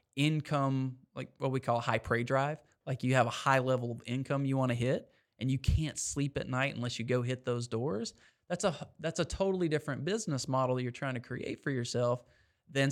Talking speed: 220 wpm